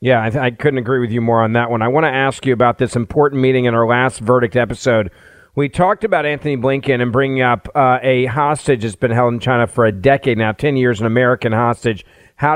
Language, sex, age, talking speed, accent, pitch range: English, male, 50-69, 245 wpm, American, 125-160 Hz